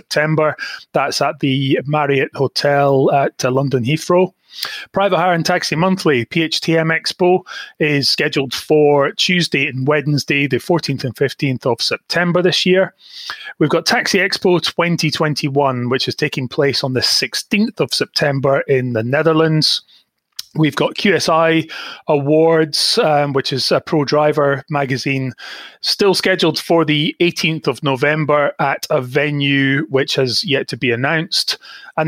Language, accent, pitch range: English, British, 135-160 Hz